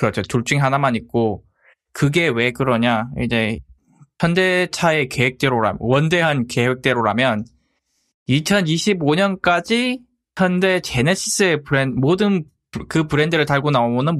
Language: Korean